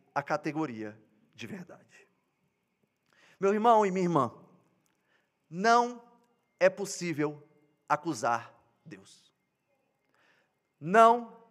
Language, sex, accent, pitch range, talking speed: Portuguese, male, Brazilian, 180-235 Hz, 80 wpm